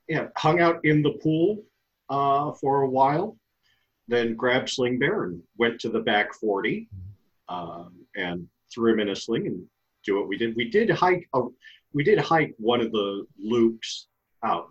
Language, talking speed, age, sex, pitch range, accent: English, 180 wpm, 40-59, male, 100-140 Hz, American